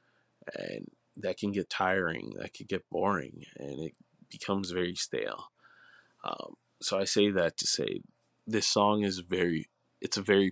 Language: English